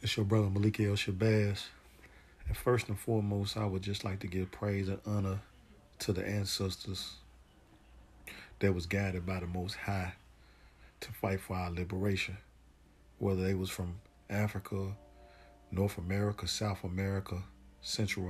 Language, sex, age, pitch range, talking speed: Arabic, male, 40-59, 90-105 Hz, 145 wpm